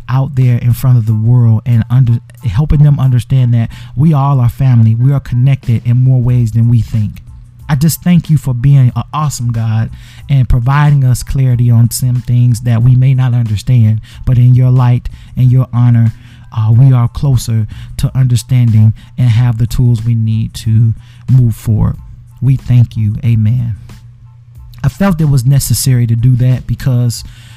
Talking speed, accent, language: 180 wpm, American, English